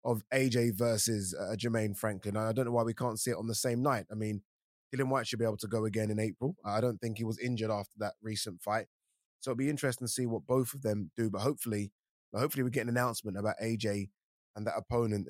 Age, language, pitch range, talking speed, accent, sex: 20-39, English, 110-130 Hz, 245 wpm, British, male